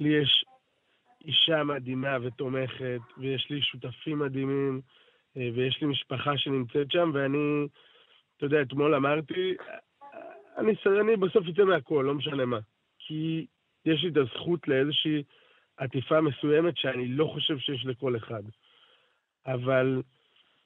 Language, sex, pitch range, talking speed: Hebrew, male, 130-175 Hz, 120 wpm